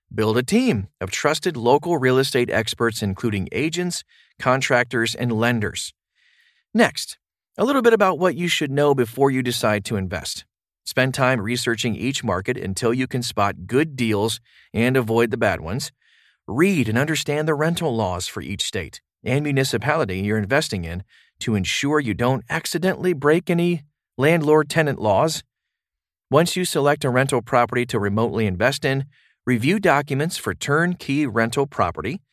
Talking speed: 155 wpm